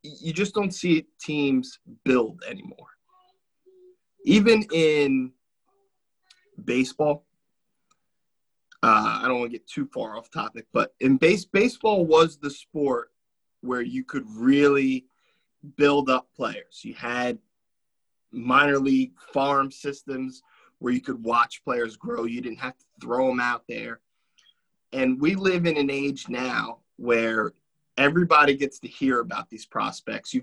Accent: American